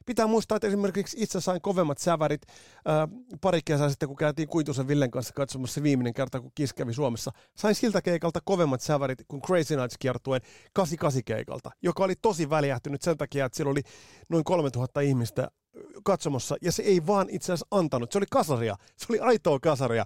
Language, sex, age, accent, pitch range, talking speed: Finnish, male, 30-49, native, 125-180 Hz, 180 wpm